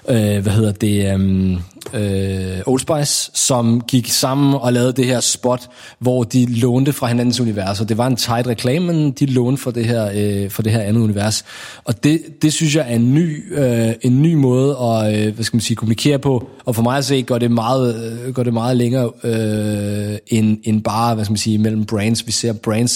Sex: male